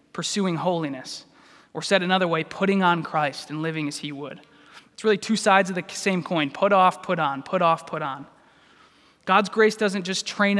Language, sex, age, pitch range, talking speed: English, male, 20-39, 155-190 Hz, 200 wpm